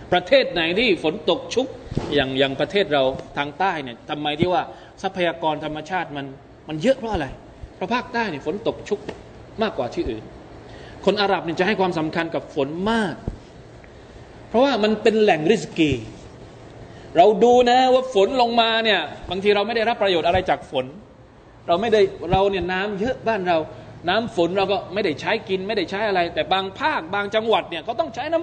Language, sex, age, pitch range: Thai, male, 20-39, 155-220 Hz